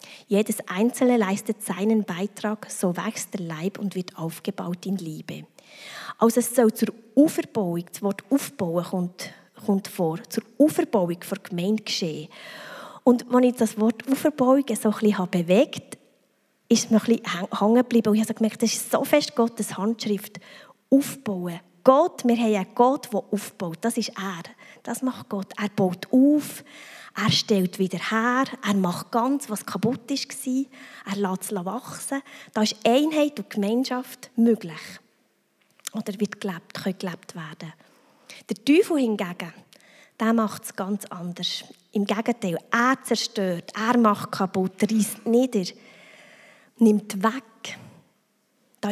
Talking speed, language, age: 150 wpm, German, 20-39